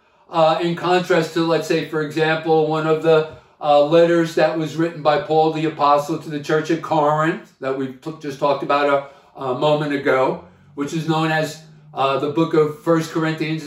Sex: male